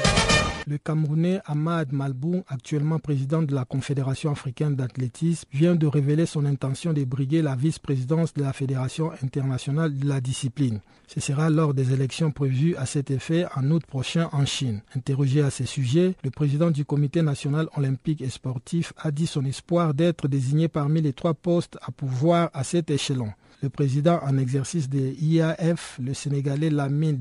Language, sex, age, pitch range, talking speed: French, male, 50-69, 135-165 Hz, 170 wpm